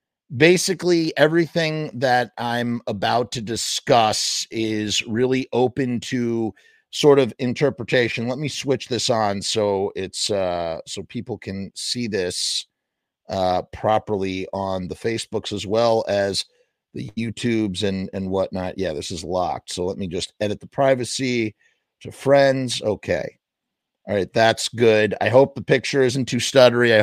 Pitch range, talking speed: 110-140 Hz, 145 wpm